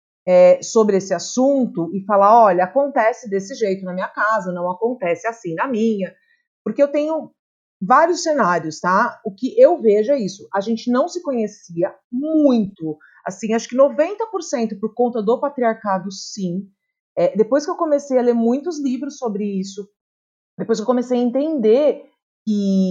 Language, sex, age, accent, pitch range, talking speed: Portuguese, female, 40-59, Brazilian, 190-255 Hz, 165 wpm